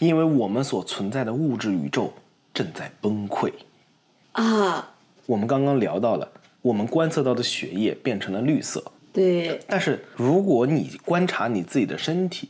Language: Chinese